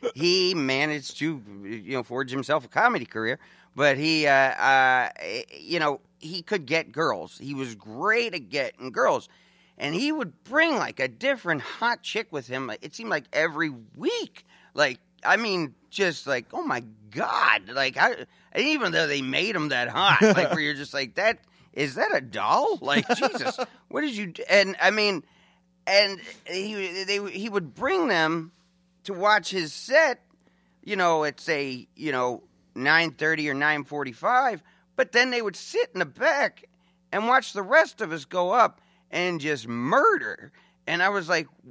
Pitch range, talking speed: 145-225 Hz, 180 wpm